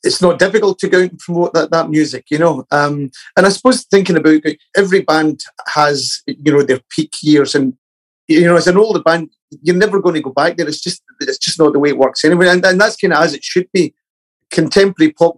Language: English